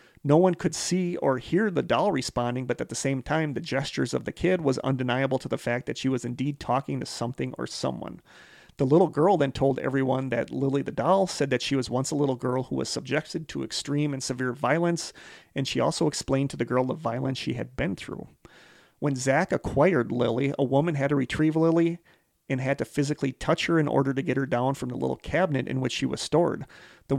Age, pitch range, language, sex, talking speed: 40-59, 125-145 Hz, English, male, 230 wpm